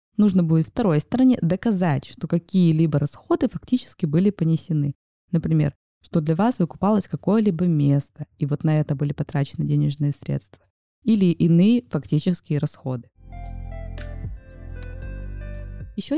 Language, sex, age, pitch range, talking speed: Russian, female, 20-39, 155-195 Hz, 115 wpm